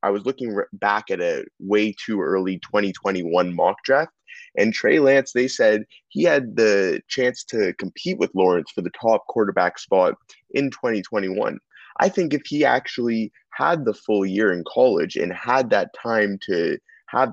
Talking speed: 170 wpm